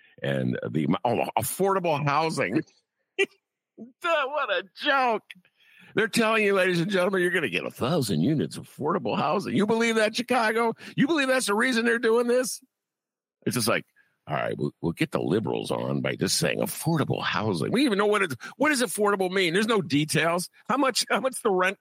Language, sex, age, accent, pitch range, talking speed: English, male, 50-69, American, 155-245 Hz, 195 wpm